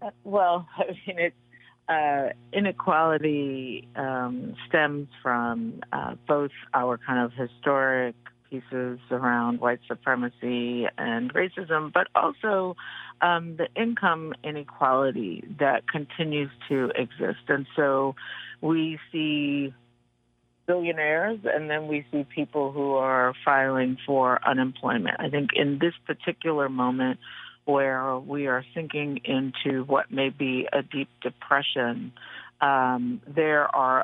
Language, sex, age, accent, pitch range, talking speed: English, female, 50-69, American, 125-150 Hz, 115 wpm